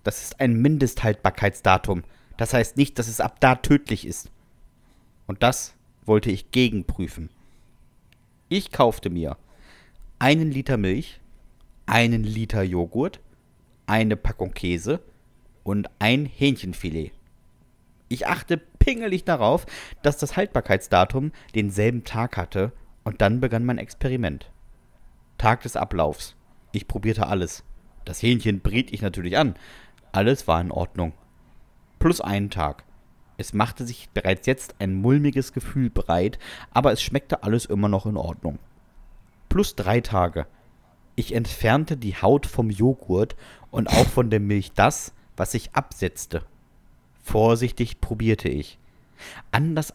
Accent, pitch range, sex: German, 95-125 Hz, male